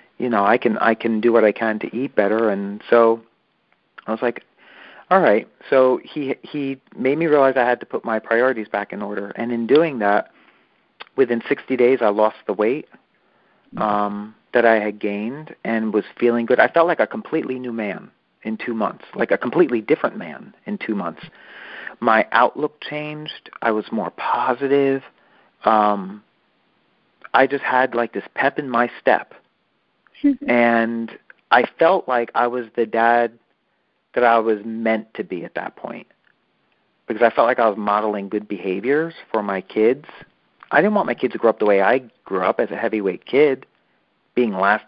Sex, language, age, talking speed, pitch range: male, English, 40-59, 185 wpm, 110-135 Hz